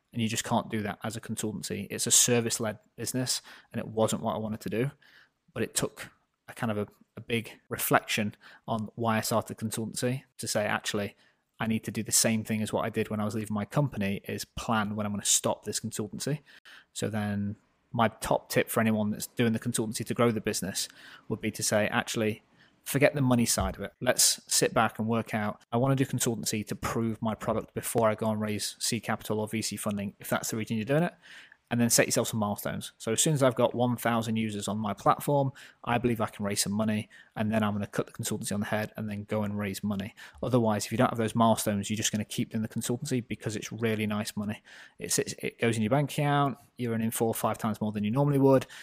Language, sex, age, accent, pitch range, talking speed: English, male, 20-39, British, 105-120 Hz, 250 wpm